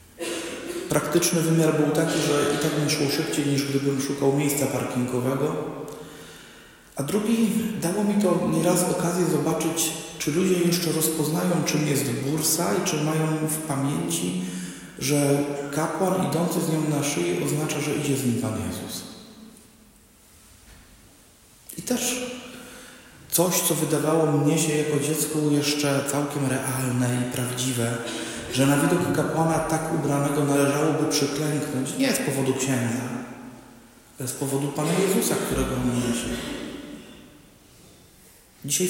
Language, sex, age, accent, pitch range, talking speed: Polish, male, 40-59, native, 135-160 Hz, 135 wpm